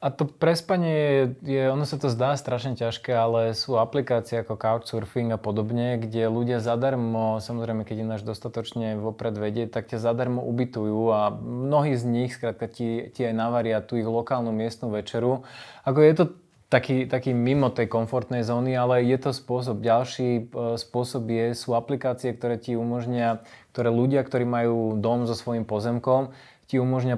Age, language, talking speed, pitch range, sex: 20-39, Slovak, 165 wpm, 115-130 Hz, male